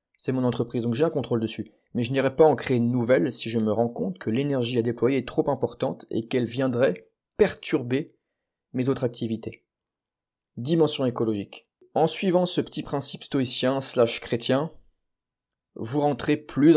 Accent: French